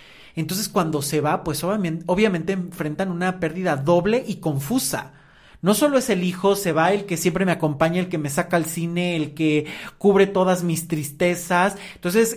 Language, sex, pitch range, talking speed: Spanish, male, 145-205 Hz, 185 wpm